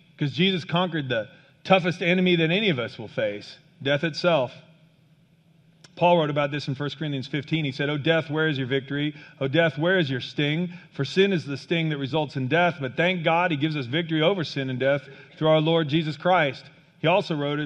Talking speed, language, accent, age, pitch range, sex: 220 wpm, English, American, 40-59, 145-180 Hz, male